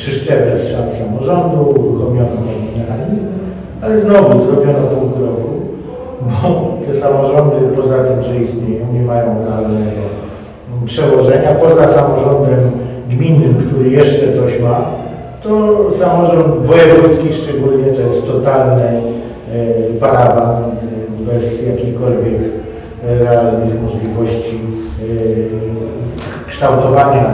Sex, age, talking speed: male, 50-69, 95 wpm